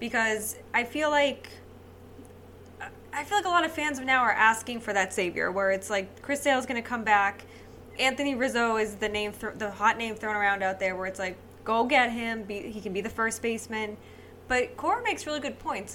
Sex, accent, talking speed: female, American, 225 wpm